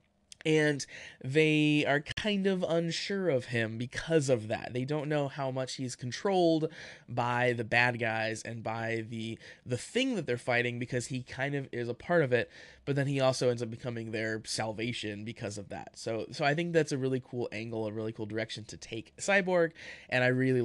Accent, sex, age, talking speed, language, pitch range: American, male, 20-39, 205 wpm, English, 120-150 Hz